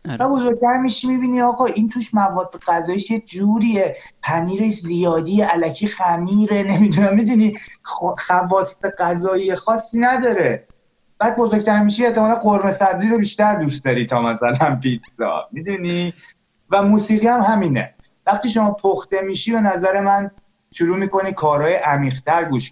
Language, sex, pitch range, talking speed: Persian, male, 130-205 Hz, 135 wpm